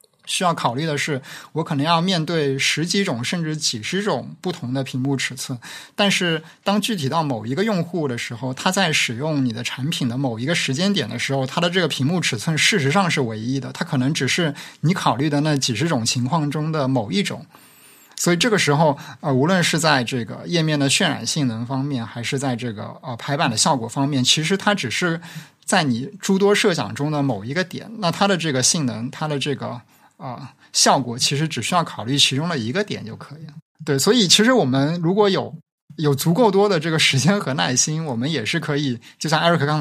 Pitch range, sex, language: 130-165 Hz, male, Chinese